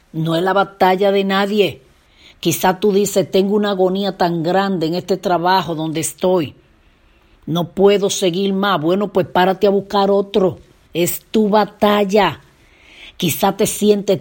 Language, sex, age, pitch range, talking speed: Spanish, female, 40-59, 170-200 Hz, 150 wpm